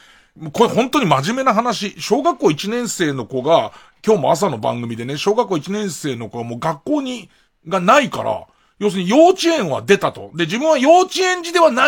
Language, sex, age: Japanese, male, 40-59